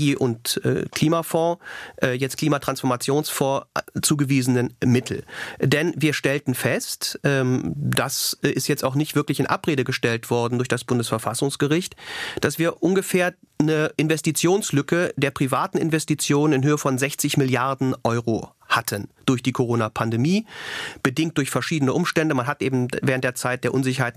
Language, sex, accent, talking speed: German, male, German, 130 wpm